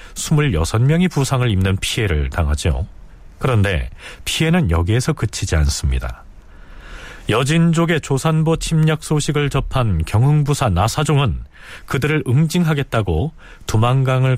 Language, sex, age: Korean, male, 40-59